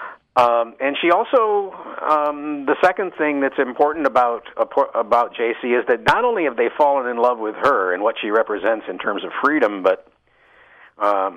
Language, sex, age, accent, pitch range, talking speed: English, male, 50-69, American, 120-185 Hz, 180 wpm